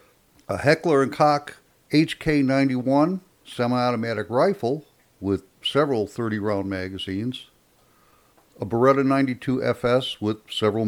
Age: 60-79